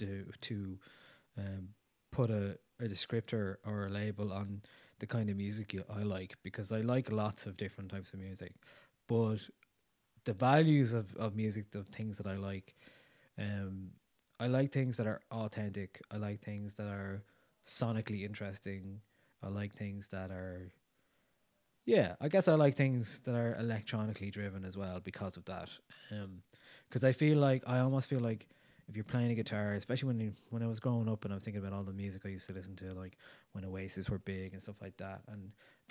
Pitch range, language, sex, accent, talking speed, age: 95-115 Hz, English, male, Irish, 195 wpm, 20-39